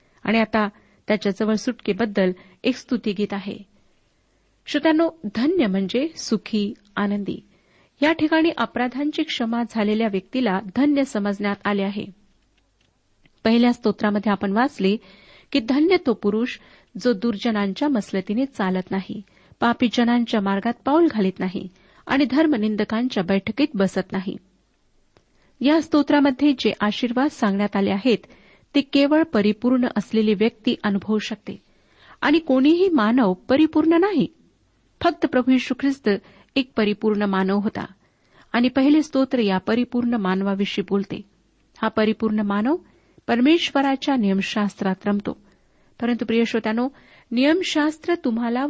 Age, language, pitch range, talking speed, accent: 40-59, Marathi, 205-275 Hz, 110 wpm, native